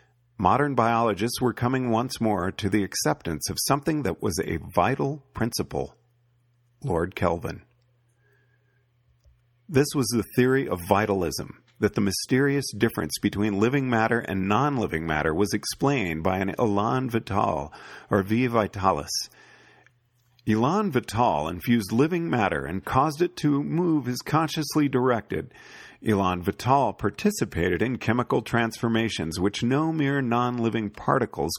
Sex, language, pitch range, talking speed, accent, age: male, English, 105-135 Hz, 125 wpm, American, 50-69